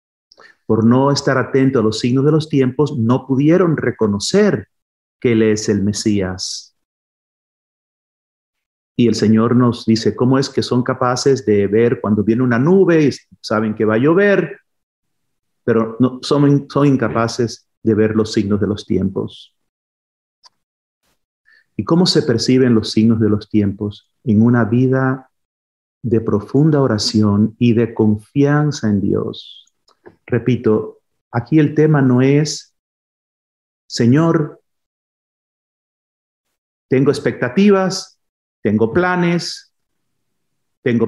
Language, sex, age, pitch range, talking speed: Spanish, male, 40-59, 110-155 Hz, 125 wpm